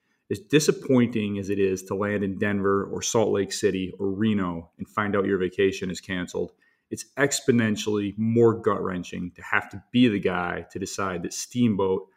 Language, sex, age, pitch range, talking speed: English, male, 30-49, 95-115 Hz, 180 wpm